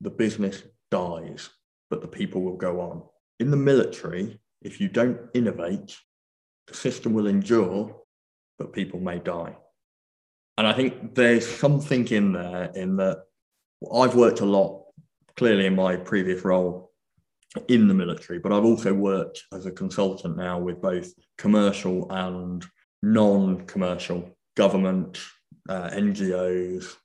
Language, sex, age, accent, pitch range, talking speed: English, male, 20-39, British, 90-115 Hz, 135 wpm